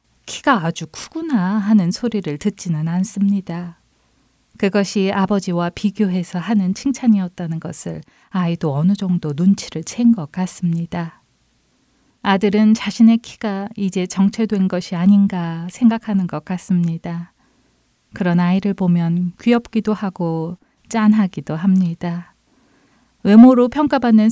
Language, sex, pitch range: Korean, female, 170-215 Hz